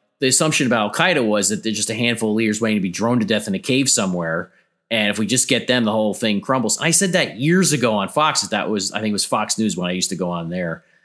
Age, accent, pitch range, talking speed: 30-49, American, 95-120 Hz, 305 wpm